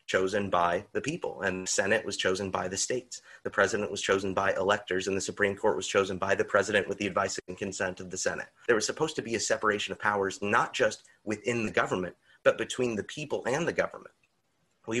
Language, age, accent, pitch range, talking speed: English, 30-49, American, 95-105 Hz, 230 wpm